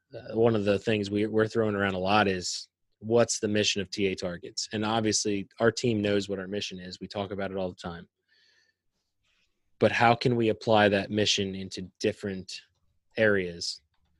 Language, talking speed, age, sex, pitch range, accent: English, 185 wpm, 20-39, male, 100-115 Hz, American